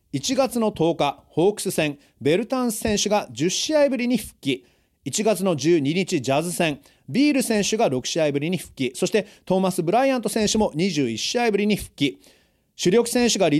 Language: Japanese